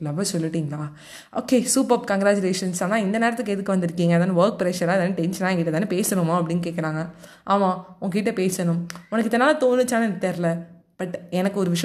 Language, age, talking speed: Tamil, 20-39, 155 wpm